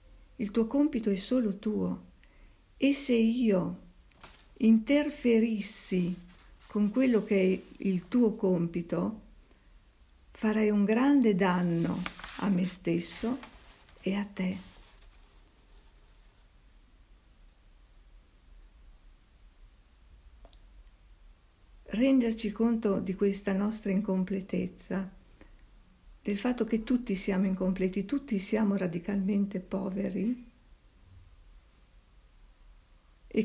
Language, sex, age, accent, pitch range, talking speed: Italian, female, 50-69, native, 175-225 Hz, 80 wpm